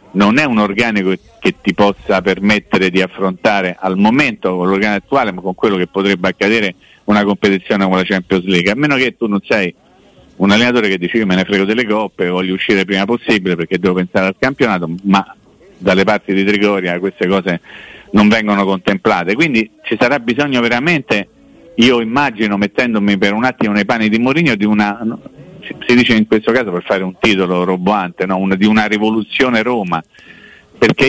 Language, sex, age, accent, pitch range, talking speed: Italian, male, 40-59, native, 95-115 Hz, 185 wpm